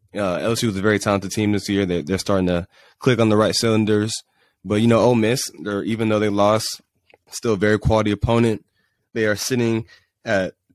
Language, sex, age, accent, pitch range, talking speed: English, male, 20-39, American, 90-110 Hz, 205 wpm